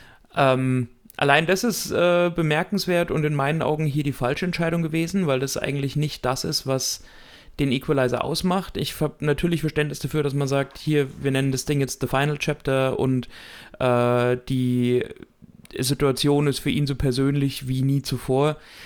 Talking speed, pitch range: 175 wpm, 130-155 Hz